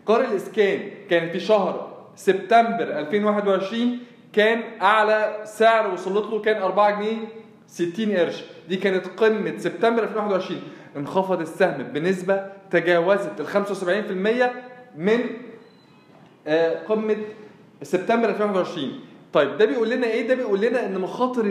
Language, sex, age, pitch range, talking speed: Arabic, male, 20-39, 190-225 Hz, 115 wpm